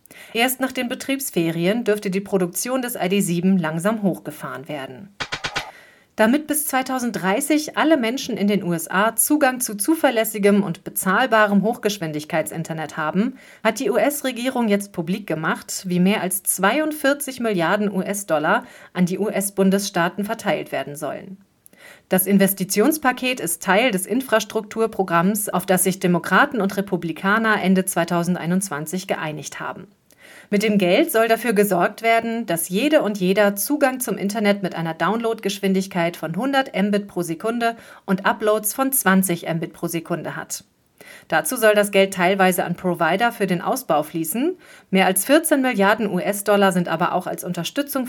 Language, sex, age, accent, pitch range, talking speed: German, female, 40-59, German, 180-225 Hz, 140 wpm